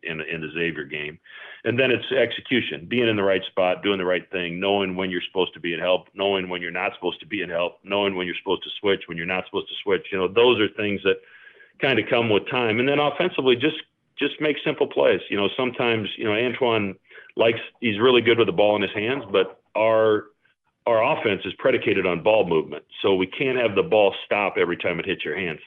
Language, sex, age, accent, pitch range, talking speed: English, male, 40-59, American, 90-120 Hz, 245 wpm